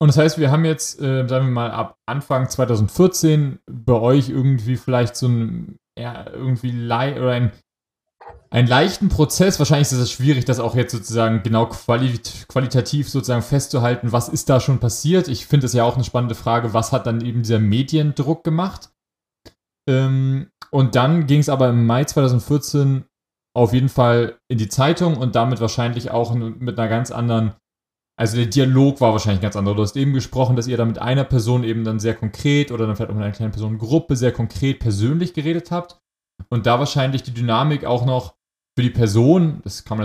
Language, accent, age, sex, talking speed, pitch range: German, German, 30-49, male, 195 wpm, 115-140 Hz